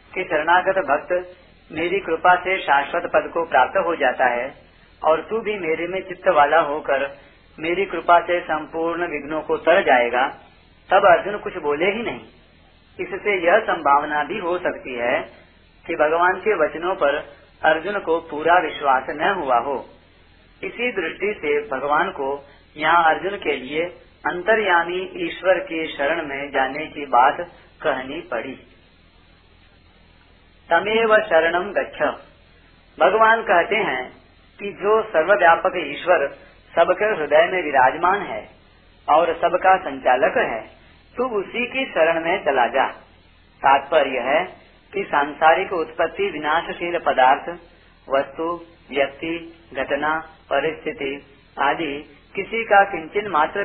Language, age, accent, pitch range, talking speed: Hindi, 40-59, native, 150-190 Hz, 130 wpm